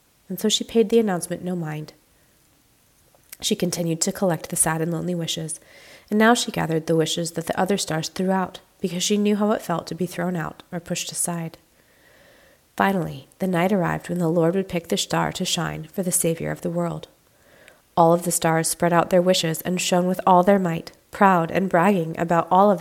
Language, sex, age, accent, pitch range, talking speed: English, female, 30-49, American, 165-190 Hz, 215 wpm